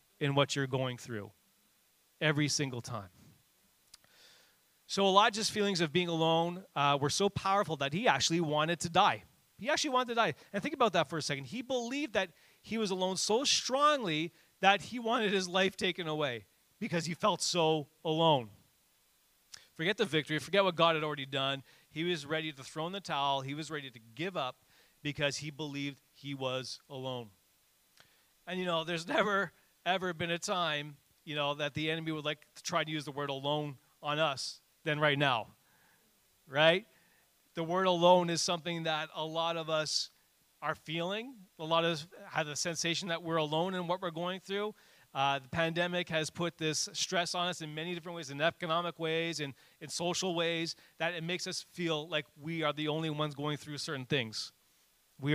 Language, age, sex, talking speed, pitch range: English, 30-49, male, 190 wpm, 145-180 Hz